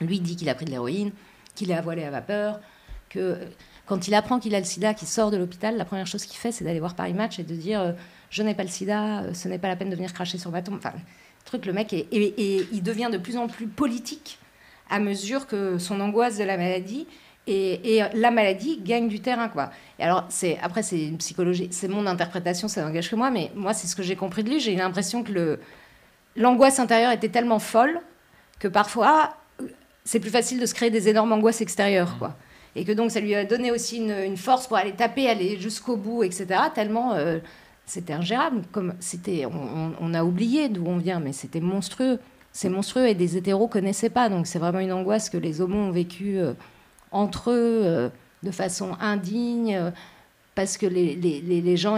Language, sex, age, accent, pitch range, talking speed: French, female, 40-59, French, 180-225 Hz, 225 wpm